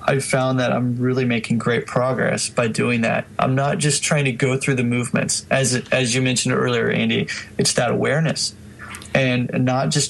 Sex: male